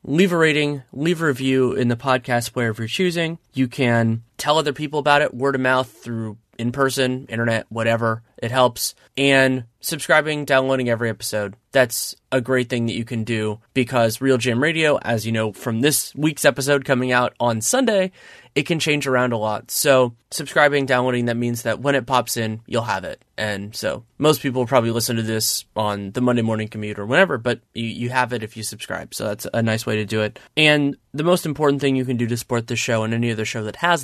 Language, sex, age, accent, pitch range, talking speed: English, male, 20-39, American, 115-140 Hz, 220 wpm